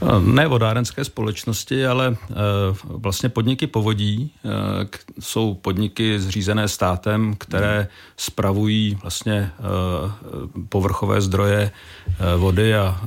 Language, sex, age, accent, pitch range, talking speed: Czech, male, 50-69, native, 95-110 Hz, 80 wpm